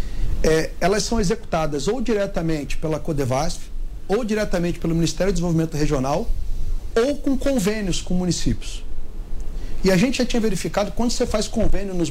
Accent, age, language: Brazilian, 40-59, English